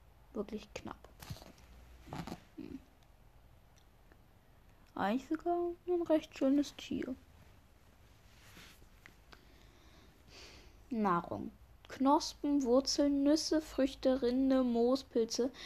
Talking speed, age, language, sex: 60 wpm, 10-29, German, female